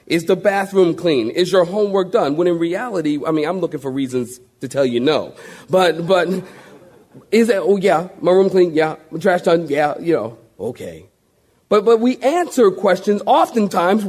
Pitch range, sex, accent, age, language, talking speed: 165-235 Hz, male, American, 40-59, English, 185 wpm